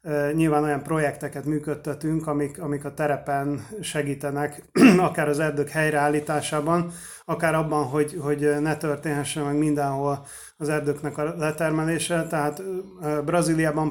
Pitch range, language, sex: 145-155 Hz, Hungarian, male